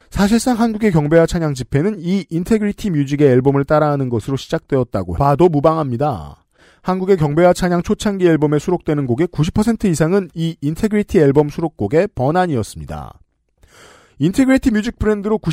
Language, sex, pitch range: Korean, male, 145-195 Hz